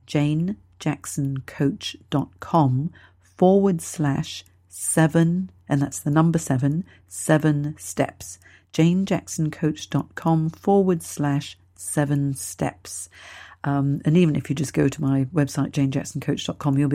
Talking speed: 100 wpm